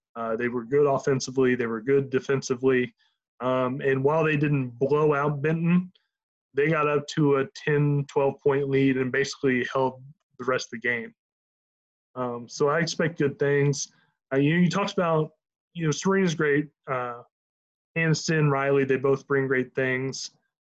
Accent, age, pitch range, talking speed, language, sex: American, 20-39, 130-155 Hz, 165 wpm, English, male